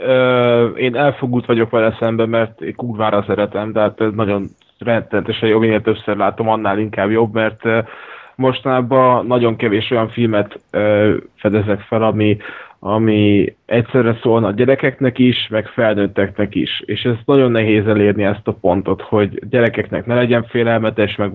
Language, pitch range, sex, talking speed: Hungarian, 105-120 Hz, male, 145 wpm